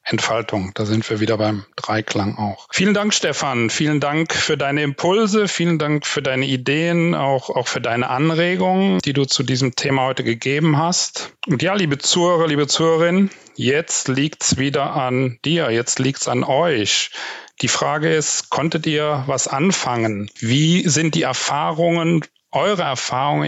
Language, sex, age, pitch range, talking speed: German, male, 40-59, 125-160 Hz, 160 wpm